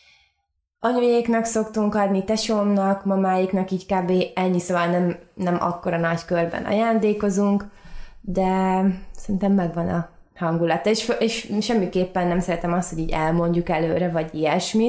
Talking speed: 130 wpm